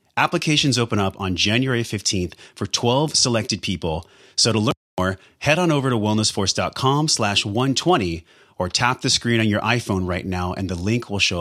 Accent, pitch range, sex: American, 90-120 Hz, male